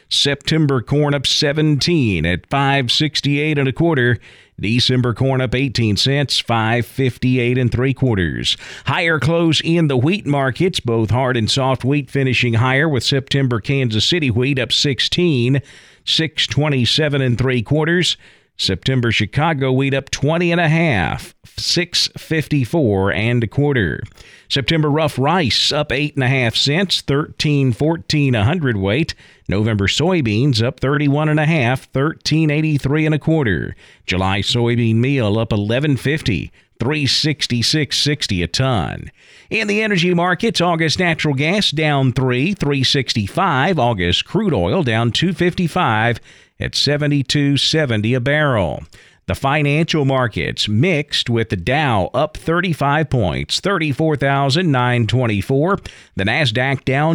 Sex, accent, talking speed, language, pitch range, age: male, American, 120 wpm, English, 120-155 Hz, 50-69